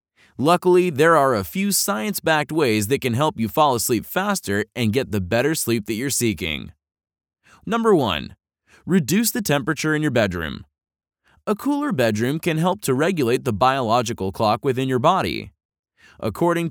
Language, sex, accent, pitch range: English, male, American, 105-170 Hz